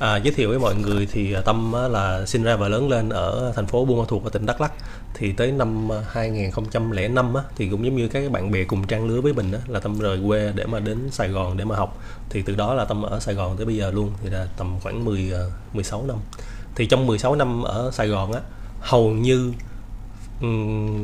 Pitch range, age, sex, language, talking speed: 100-120 Hz, 20-39, male, Vietnamese, 240 wpm